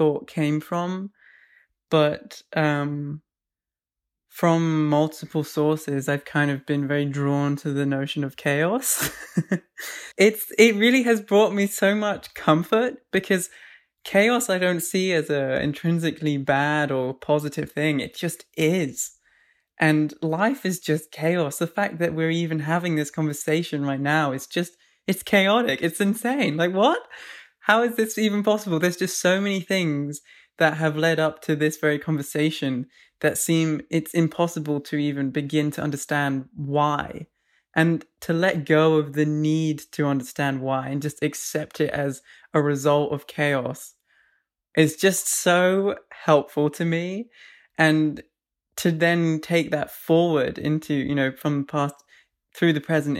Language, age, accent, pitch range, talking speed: English, 20-39, British, 145-175 Hz, 150 wpm